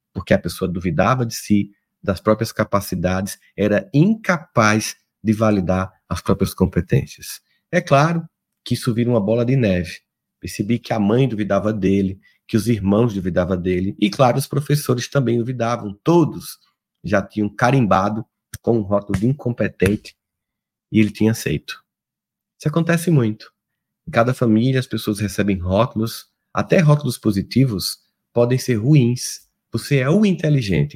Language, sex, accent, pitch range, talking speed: Portuguese, male, Brazilian, 100-135 Hz, 145 wpm